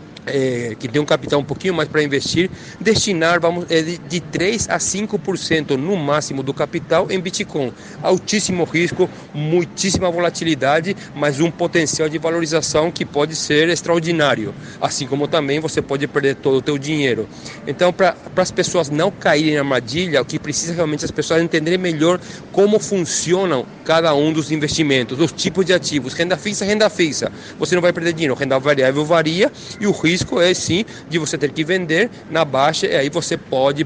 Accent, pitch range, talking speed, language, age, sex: Brazilian, 150-175 Hz, 185 wpm, Portuguese, 40-59, male